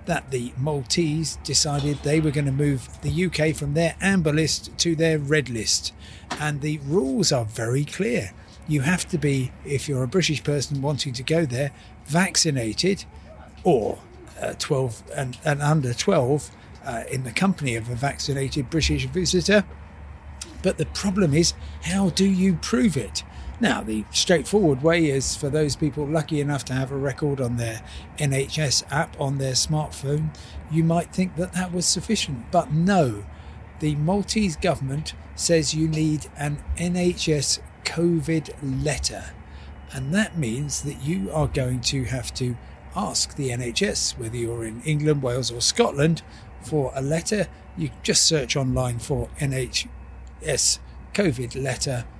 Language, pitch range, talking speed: English, 120-160 Hz, 155 wpm